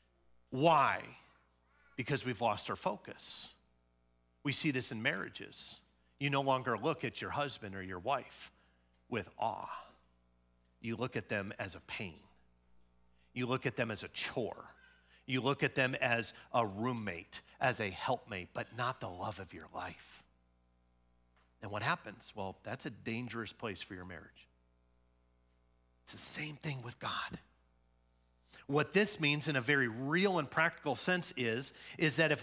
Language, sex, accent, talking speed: English, male, American, 155 wpm